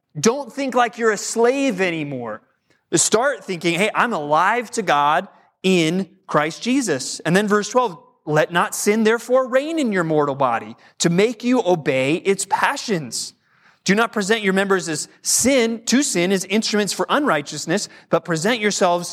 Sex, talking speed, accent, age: male, 165 wpm, American, 30-49